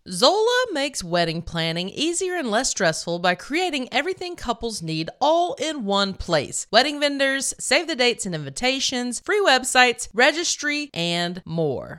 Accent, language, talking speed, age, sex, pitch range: American, English, 145 wpm, 30-49, female, 185-300 Hz